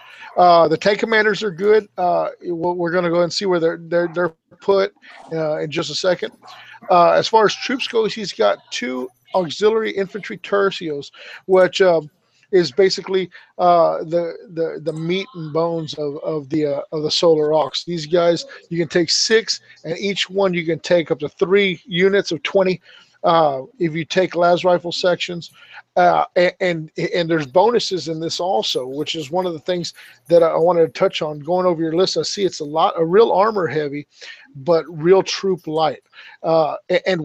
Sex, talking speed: male, 190 wpm